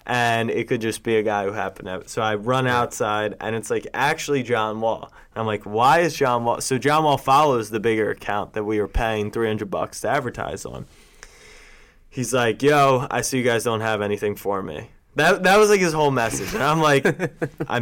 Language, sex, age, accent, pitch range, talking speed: English, male, 20-39, American, 110-130 Hz, 225 wpm